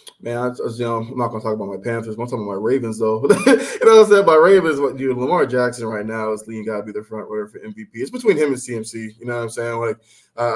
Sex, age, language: male, 20-39, English